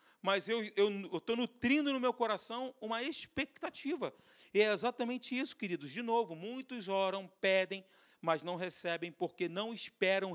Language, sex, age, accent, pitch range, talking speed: Portuguese, male, 40-59, Brazilian, 185-240 Hz, 145 wpm